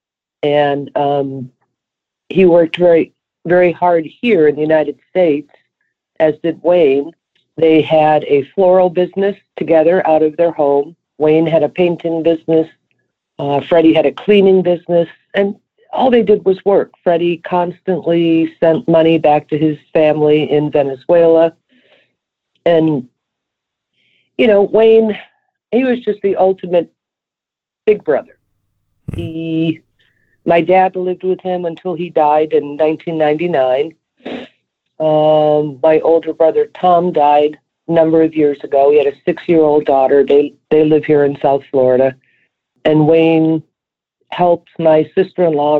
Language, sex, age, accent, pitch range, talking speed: English, female, 50-69, American, 150-180 Hz, 135 wpm